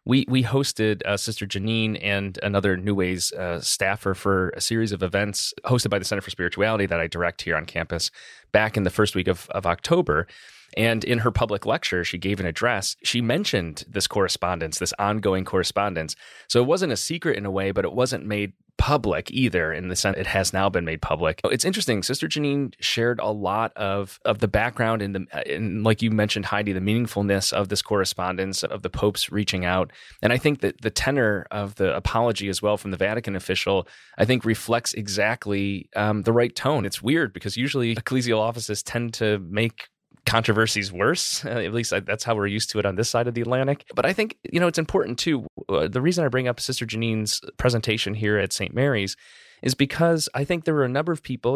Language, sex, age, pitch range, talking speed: English, male, 30-49, 100-120 Hz, 215 wpm